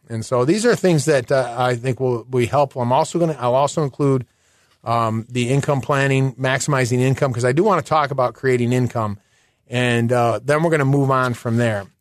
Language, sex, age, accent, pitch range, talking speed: English, male, 40-59, American, 125-160 Hz, 220 wpm